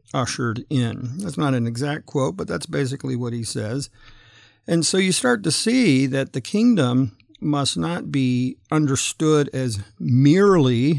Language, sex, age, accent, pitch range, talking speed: English, male, 50-69, American, 115-150 Hz, 155 wpm